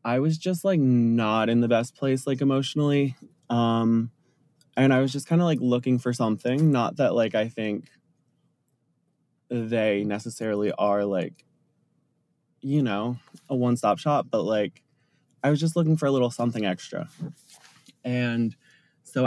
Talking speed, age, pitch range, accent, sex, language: 155 wpm, 20-39, 110-135 Hz, American, male, English